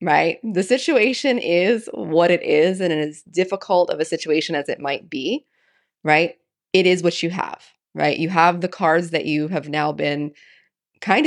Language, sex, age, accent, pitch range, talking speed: English, female, 20-39, American, 150-185 Hz, 185 wpm